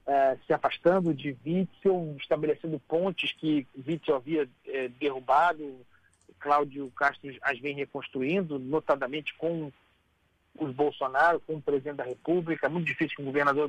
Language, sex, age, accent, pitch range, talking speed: Portuguese, male, 40-59, Brazilian, 135-160 Hz, 140 wpm